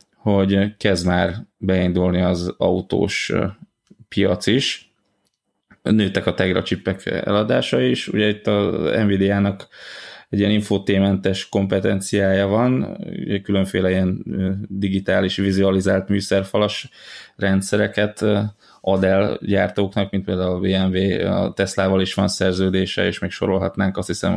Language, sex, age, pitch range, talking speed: Hungarian, male, 20-39, 95-105 Hz, 110 wpm